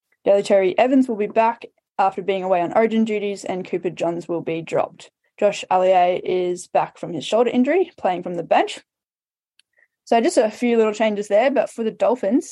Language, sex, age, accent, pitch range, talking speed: English, female, 10-29, Australian, 175-205 Hz, 195 wpm